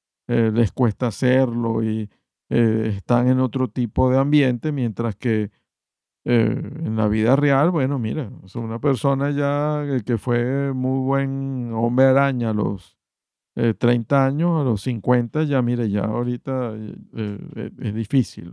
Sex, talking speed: male, 160 wpm